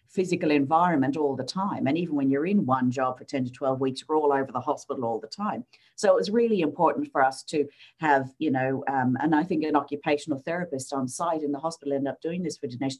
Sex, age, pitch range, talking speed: female, 50-69, 145-180 Hz, 250 wpm